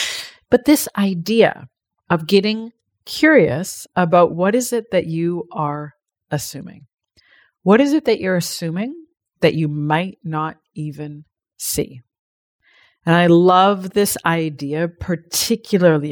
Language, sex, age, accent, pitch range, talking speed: English, female, 40-59, American, 155-190 Hz, 120 wpm